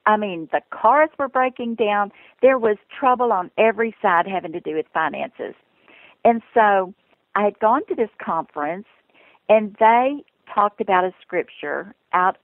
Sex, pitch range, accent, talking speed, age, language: female, 180-235 Hz, American, 160 wpm, 50-69, English